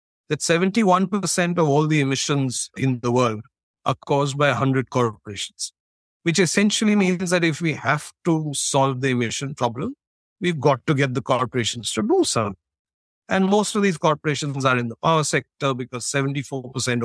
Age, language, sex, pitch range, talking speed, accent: 50-69, English, male, 125-180 Hz, 165 wpm, Indian